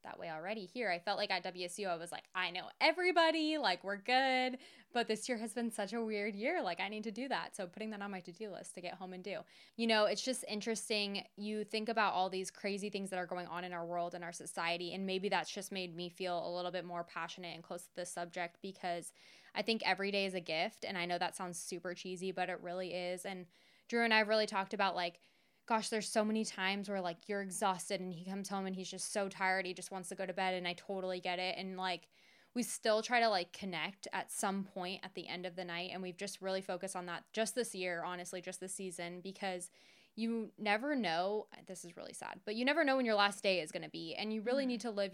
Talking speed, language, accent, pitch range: 265 wpm, English, American, 180-215 Hz